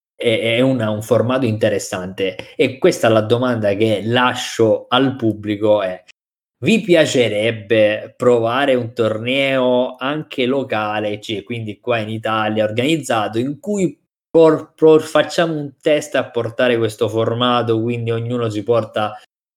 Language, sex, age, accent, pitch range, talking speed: Italian, male, 20-39, native, 105-130 Hz, 130 wpm